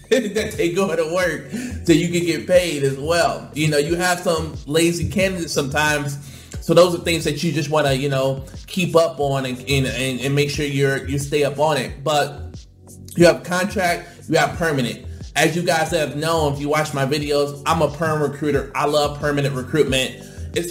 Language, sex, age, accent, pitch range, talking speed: English, male, 20-39, American, 140-165 Hz, 205 wpm